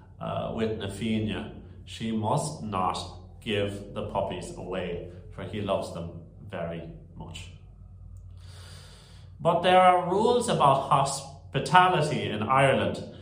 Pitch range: 95-130 Hz